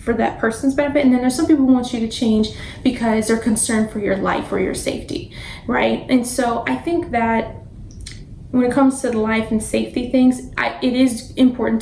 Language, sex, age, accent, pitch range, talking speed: English, female, 20-39, American, 220-260 Hz, 210 wpm